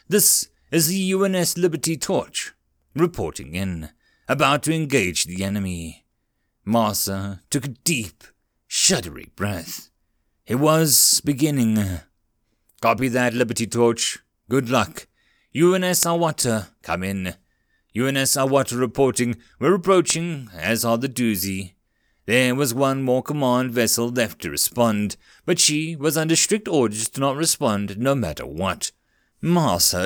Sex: male